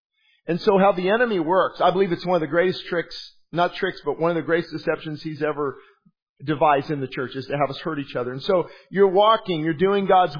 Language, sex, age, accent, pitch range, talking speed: English, male, 40-59, American, 145-190 Hz, 240 wpm